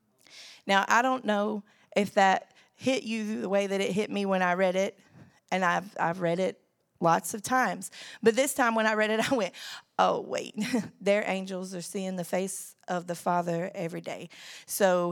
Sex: female